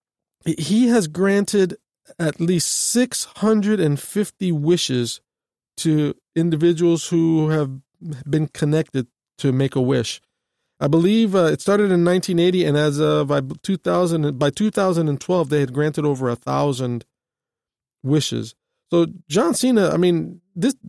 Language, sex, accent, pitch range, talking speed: English, male, American, 145-190 Hz, 145 wpm